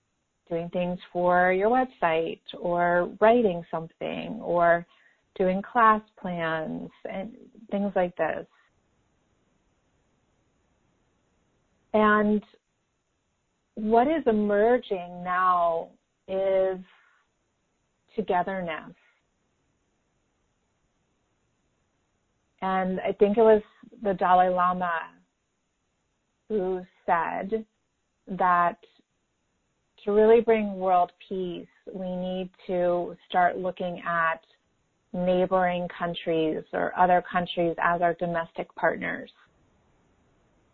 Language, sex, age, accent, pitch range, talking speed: English, female, 30-49, American, 170-195 Hz, 80 wpm